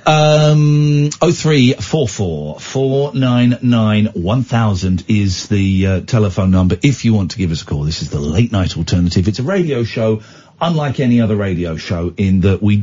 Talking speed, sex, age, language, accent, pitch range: 185 wpm, male, 50-69, English, British, 100-150 Hz